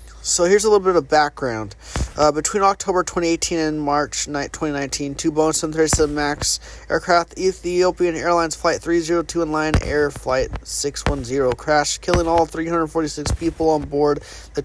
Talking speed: 150 wpm